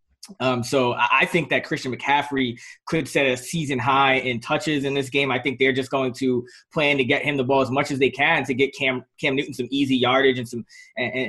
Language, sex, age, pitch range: English, male, 20-39, 135-155 Hz